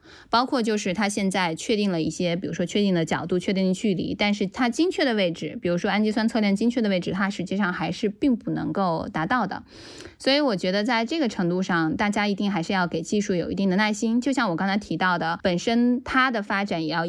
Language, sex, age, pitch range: Chinese, female, 10-29, 175-230 Hz